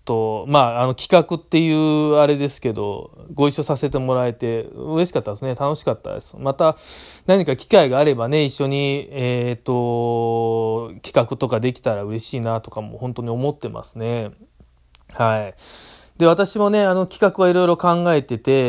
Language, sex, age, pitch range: Japanese, male, 20-39, 120-160 Hz